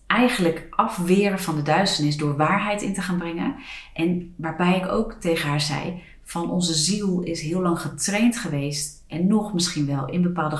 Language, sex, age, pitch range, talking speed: Dutch, female, 40-59, 145-175 Hz, 180 wpm